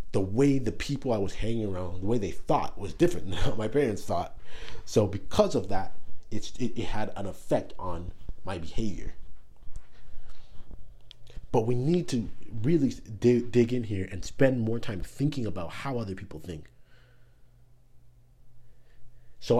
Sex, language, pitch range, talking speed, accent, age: male, English, 95-120 Hz, 155 wpm, American, 30-49